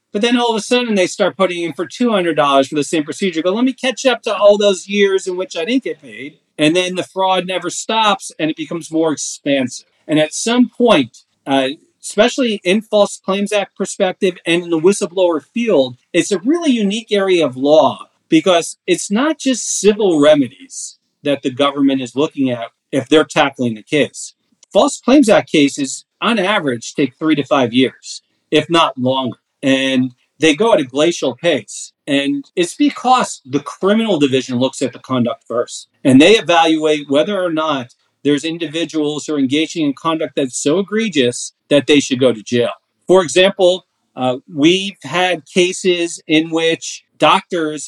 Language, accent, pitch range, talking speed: English, American, 140-200 Hz, 180 wpm